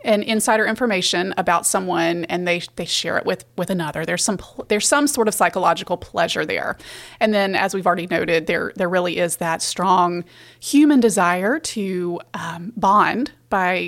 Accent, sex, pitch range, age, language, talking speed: American, female, 180-225 Hz, 30-49, English, 175 wpm